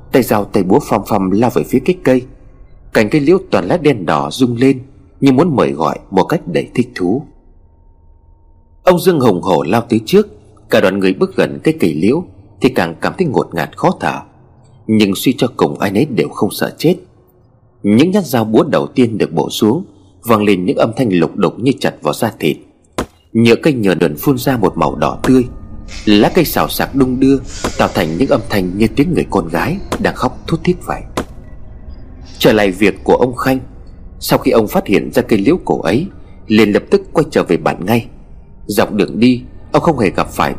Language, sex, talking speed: Vietnamese, male, 215 wpm